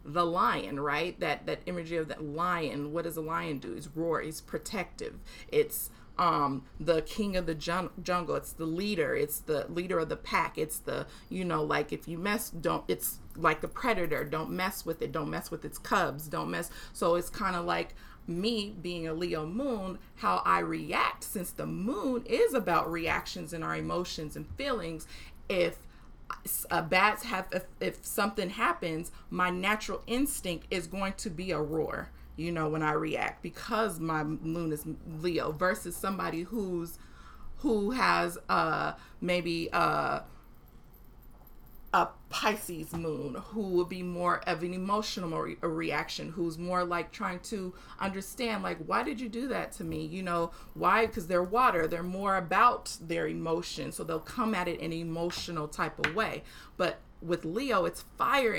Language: English